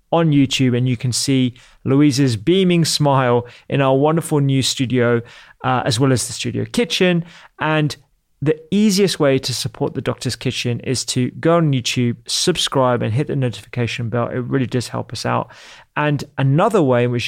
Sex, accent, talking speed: male, British, 180 wpm